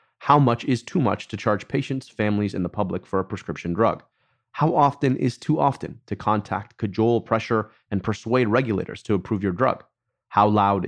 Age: 30-49